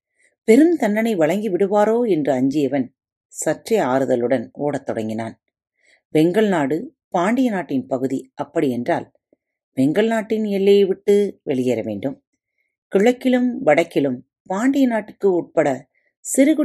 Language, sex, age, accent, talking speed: Tamil, female, 30-49, native, 100 wpm